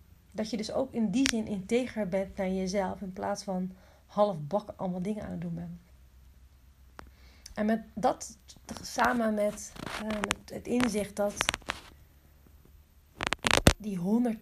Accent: Dutch